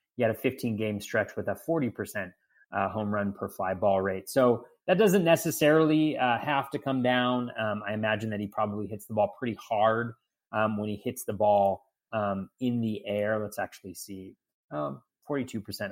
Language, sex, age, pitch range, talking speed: English, male, 30-49, 105-130 Hz, 185 wpm